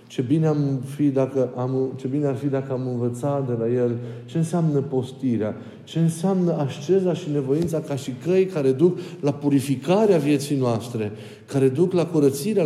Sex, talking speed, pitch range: male, 145 wpm, 125-150 Hz